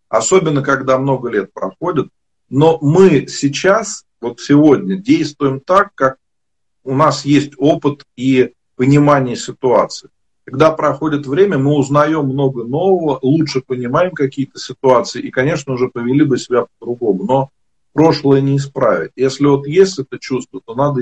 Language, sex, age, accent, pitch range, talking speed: Russian, male, 40-59, native, 120-150 Hz, 140 wpm